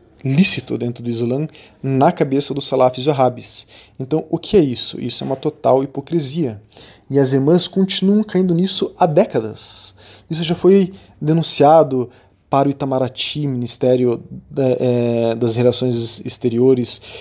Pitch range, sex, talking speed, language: 125-155 Hz, male, 135 wpm, Portuguese